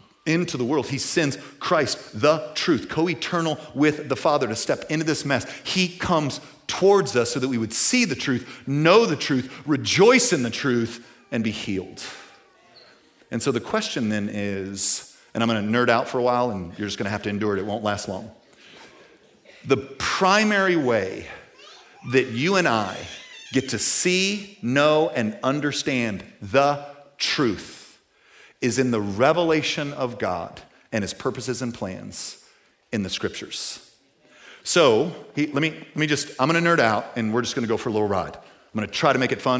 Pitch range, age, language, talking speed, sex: 115-155 Hz, 40-59, English, 185 wpm, male